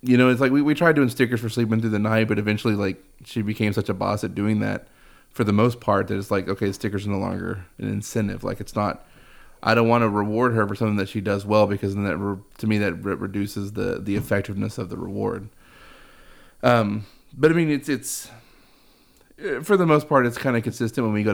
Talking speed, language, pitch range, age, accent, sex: 240 wpm, English, 100-115 Hz, 30-49, American, male